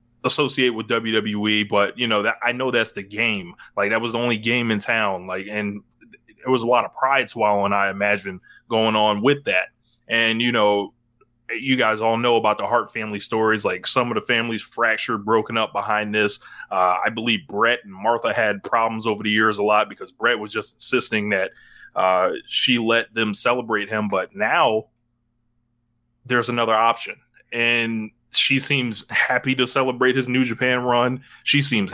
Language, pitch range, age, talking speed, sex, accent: English, 105-120 Hz, 20-39, 190 wpm, male, American